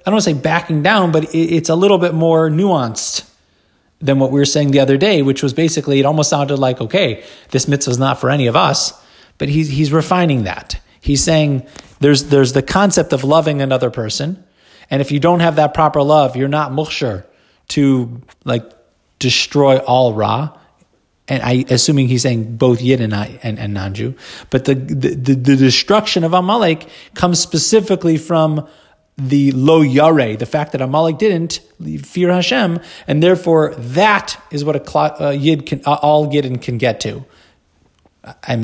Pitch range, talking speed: 125-160 Hz, 180 wpm